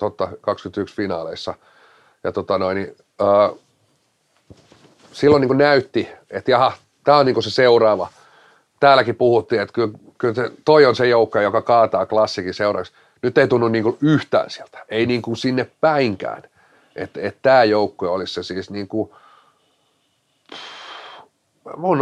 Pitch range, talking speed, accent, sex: 100-125 Hz, 135 wpm, native, male